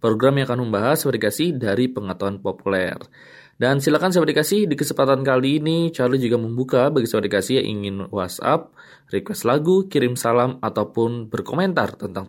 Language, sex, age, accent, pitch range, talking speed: Indonesian, male, 20-39, native, 110-150 Hz, 155 wpm